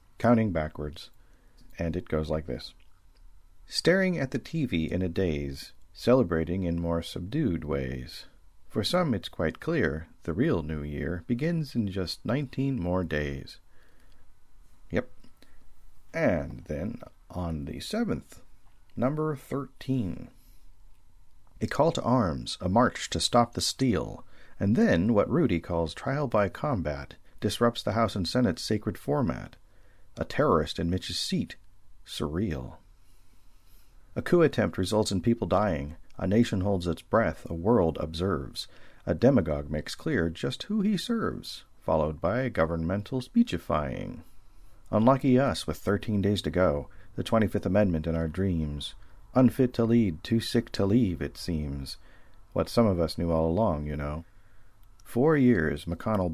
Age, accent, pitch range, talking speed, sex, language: 40-59, American, 80-115 Hz, 145 wpm, male, English